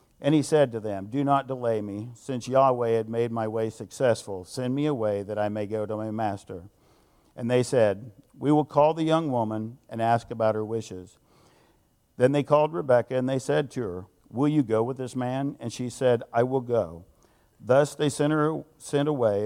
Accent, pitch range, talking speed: American, 105-130 Hz, 205 wpm